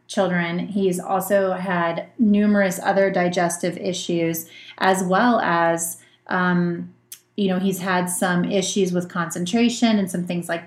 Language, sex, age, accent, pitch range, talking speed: English, female, 30-49, American, 175-200 Hz, 135 wpm